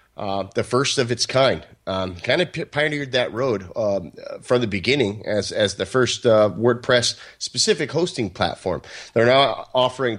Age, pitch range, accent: 30-49, 100-125 Hz, American